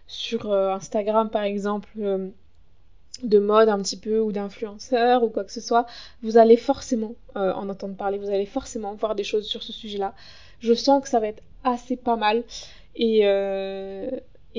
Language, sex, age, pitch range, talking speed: French, female, 20-39, 205-240 Hz, 175 wpm